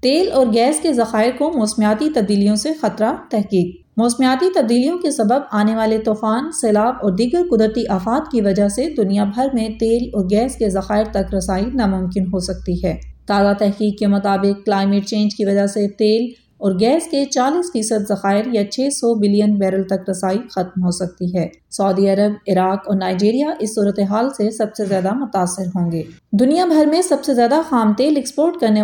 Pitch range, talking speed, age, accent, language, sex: 195-245 Hz, 185 wpm, 20-39, Indian, English, female